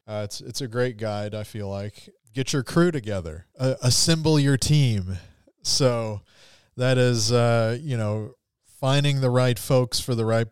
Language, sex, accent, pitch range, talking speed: English, male, American, 105-130 Hz, 170 wpm